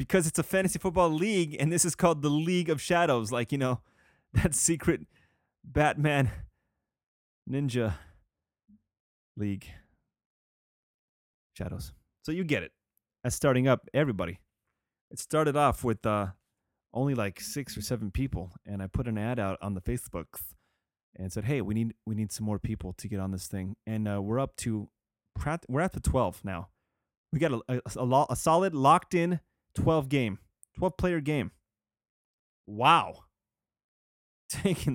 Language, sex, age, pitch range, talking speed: English, male, 30-49, 100-150 Hz, 160 wpm